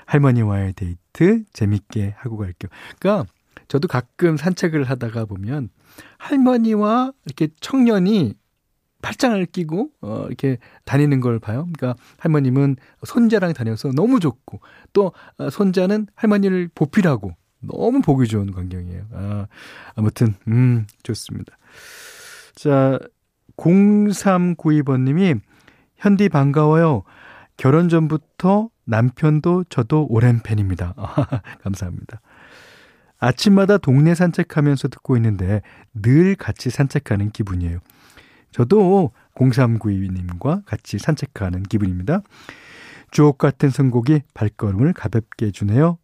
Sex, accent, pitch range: male, native, 110-165 Hz